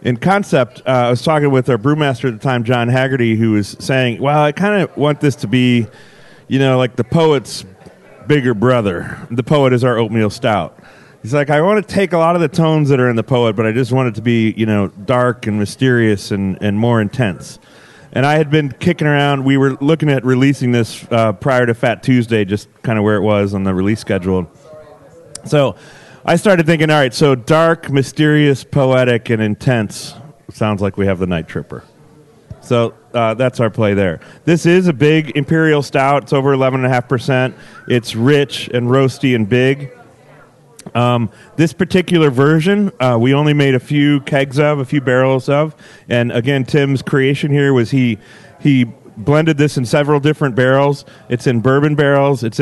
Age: 30-49